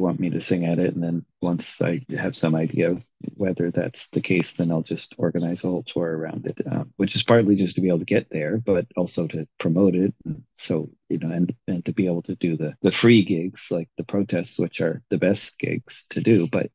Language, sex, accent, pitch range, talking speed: English, male, American, 85-100 Hz, 245 wpm